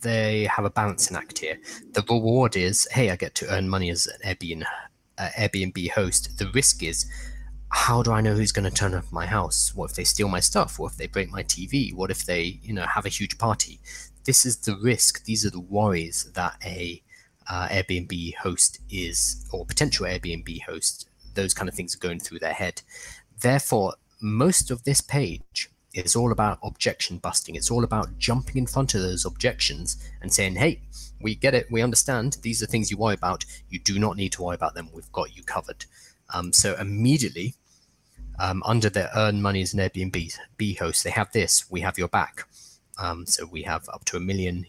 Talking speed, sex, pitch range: 205 wpm, male, 90-115 Hz